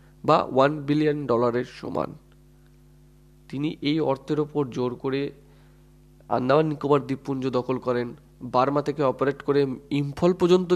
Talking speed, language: 115 wpm, Bengali